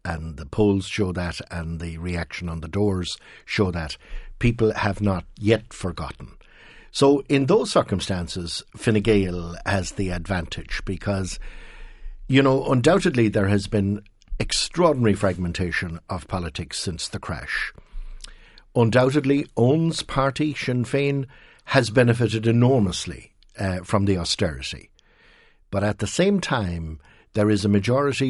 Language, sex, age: English, male, 60-79